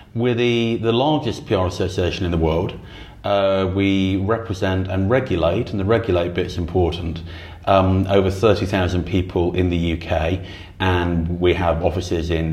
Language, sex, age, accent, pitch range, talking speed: English, male, 30-49, British, 85-100 Hz, 150 wpm